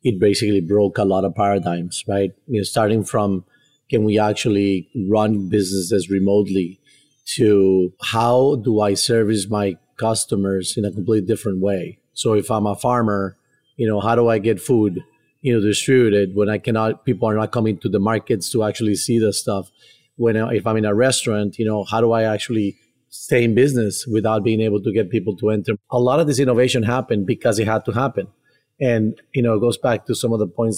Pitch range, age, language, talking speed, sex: 105-125 Hz, 30-49, English, 205 wpm, male